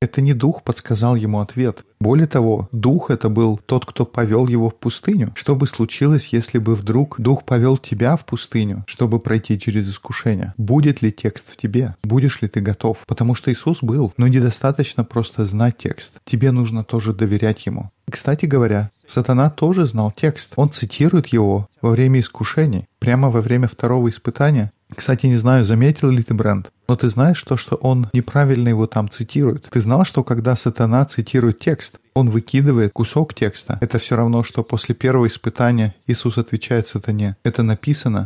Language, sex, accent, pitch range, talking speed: Russian, male, native, 110-135 Hz, 175 wpm